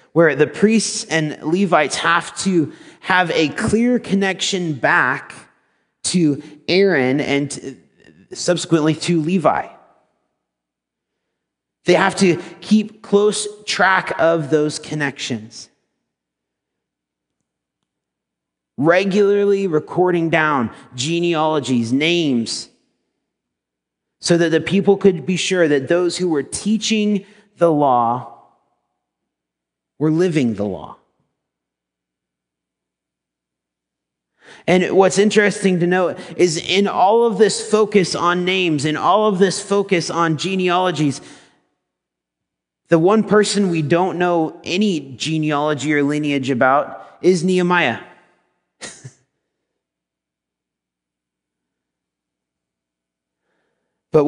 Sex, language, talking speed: male, English, 95 wpm